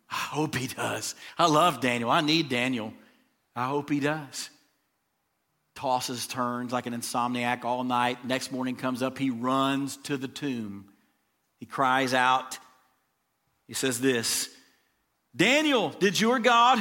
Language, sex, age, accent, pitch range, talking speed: English, male, 40-59, American, 130-180 Hz, 145 wpm